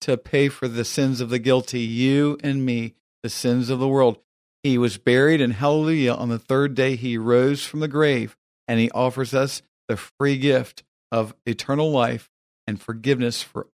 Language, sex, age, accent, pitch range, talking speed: English, male, 50-69, American, 120-150 Hz, 190 wpm